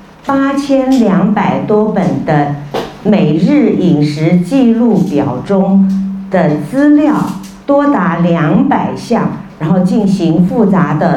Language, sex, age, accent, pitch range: Chinese, female, 50-69, American, 155-210 Hz